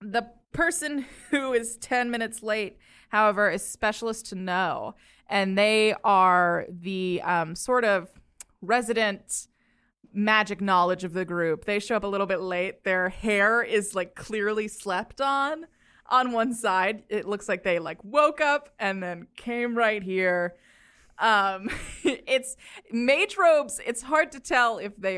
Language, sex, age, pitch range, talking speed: English, female, 20-39, 185-235 Hz, 155 wpm